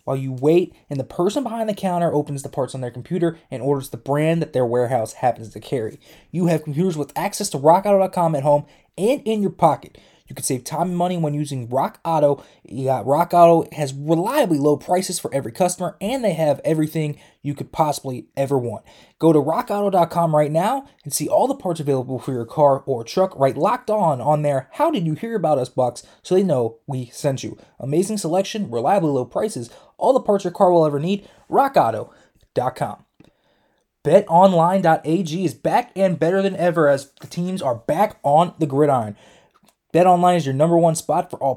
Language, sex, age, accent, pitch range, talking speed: English, male, 20-39, American, 140-190 Hz, 200 wpm